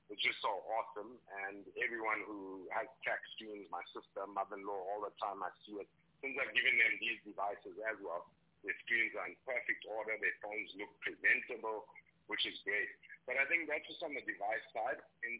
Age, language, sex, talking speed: 50-69, English, male, 195 wpm